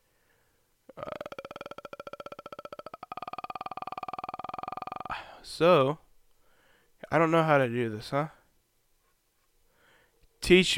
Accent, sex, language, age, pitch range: American, male, English, 20-39, 125-180 Hz